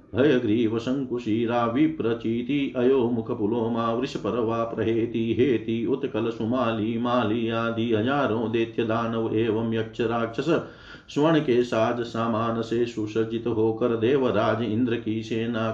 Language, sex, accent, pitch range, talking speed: Hindi, male, native, 115-140 Hz, 115 wpm